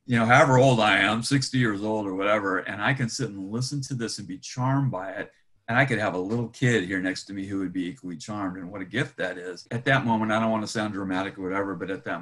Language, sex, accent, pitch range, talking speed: English, male, American, 90-115 Hz, 295 wpm